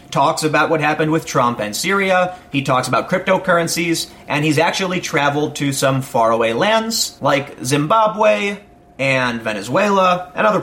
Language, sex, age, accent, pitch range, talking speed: English, male, 30-49, American, 130-180 Hz, 145 wpm